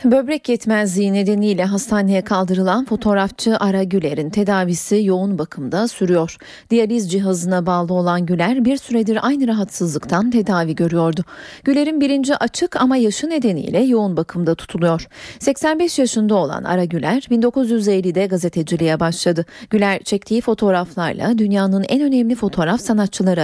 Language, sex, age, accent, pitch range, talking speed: Turkish, female, 40-59, native, 180-235 Hz, 125 wpm